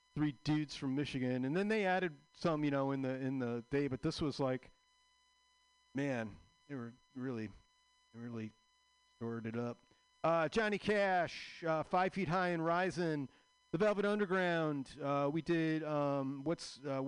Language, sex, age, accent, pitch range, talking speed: English, male, 40-59, American, 130-200 Hz, 160 wpm